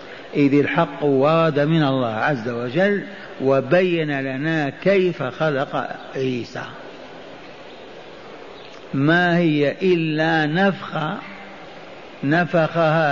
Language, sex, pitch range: Arabic, male, 165-180 Hz